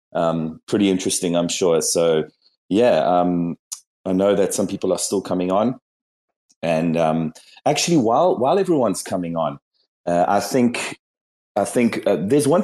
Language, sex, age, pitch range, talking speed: English, male, 30-49, 90-110 Hz, 155 wpm